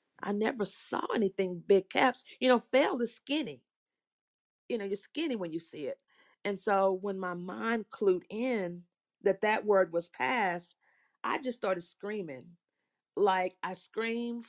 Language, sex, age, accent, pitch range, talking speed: English, female, 40-59, American, 170-205 Hz, 155 wpm